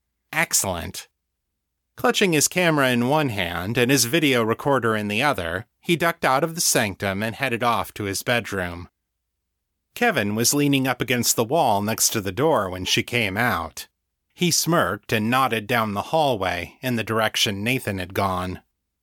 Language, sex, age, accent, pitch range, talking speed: English, male, 30-49, American, 95-130 Hz, 170 wpm